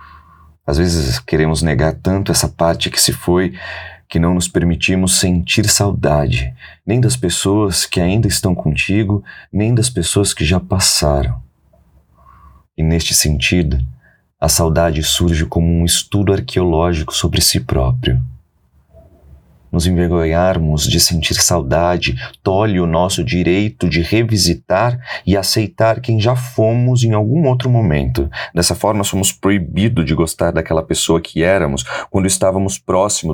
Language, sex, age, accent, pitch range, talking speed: Portuguese, male, 30-49, Brazilian, 80-100 Hz, 135 wpm